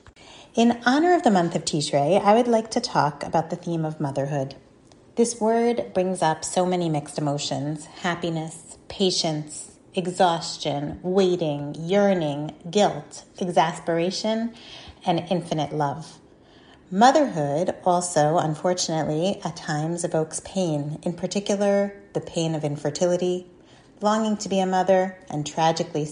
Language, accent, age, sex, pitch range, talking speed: English, American, 30-49, female, 150-195 Hz, 125 wpm